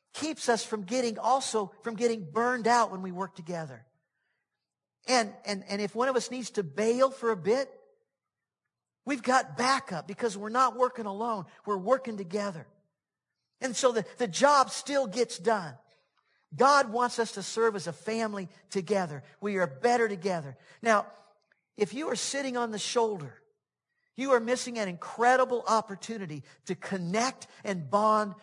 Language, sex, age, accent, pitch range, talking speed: English, male, 50-69, American, 195-260 Hz, 160 wpm